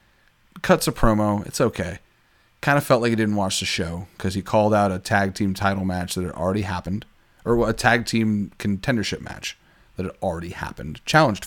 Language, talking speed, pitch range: English, 200 wpm, 95-130 Hz